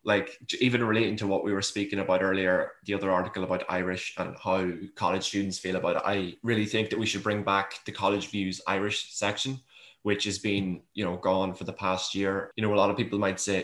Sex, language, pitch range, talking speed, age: male, English, 95-105 Hz, 235 wpm, 20-39